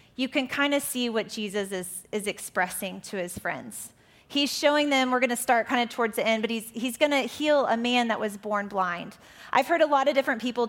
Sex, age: female, 30-49